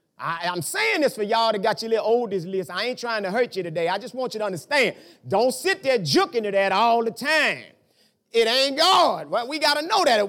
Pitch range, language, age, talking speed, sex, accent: 195-290 Hz, English, 30-49, 255 wpm, male, American